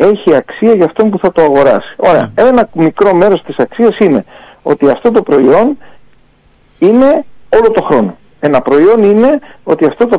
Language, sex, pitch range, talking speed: English, male, 175-270 Hz, 170 wpm